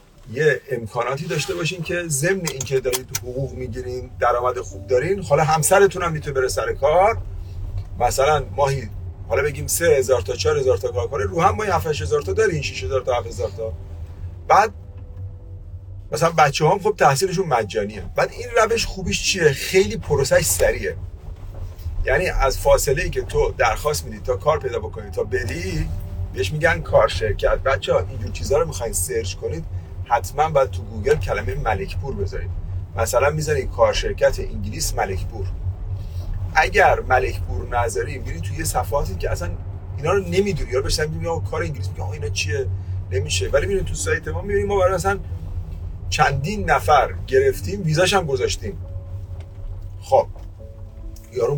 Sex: male